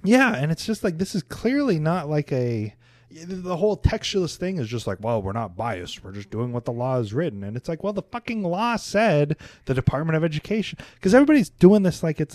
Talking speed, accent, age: 235 wpm, American, 20-39